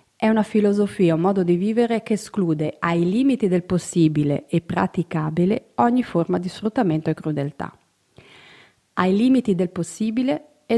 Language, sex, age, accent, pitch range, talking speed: Italian, female, 30-49, native, 170-215 Hz, 145 wpm